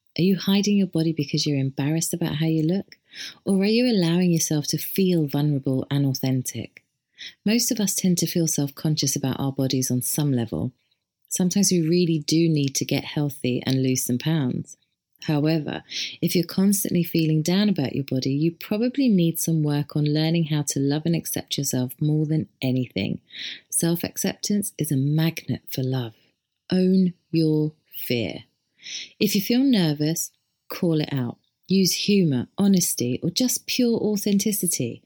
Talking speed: 165 wpm